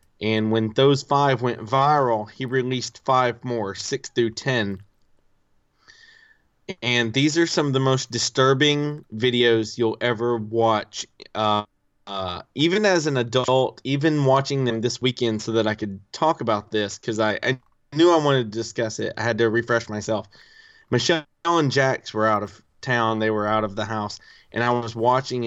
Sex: male